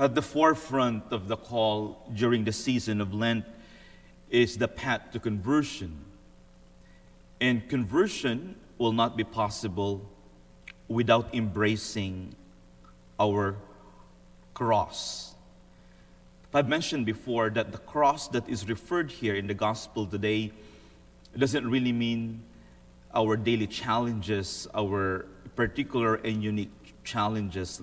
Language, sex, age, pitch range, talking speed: English, male, 30-49, 85-120 Hz, 110 wpm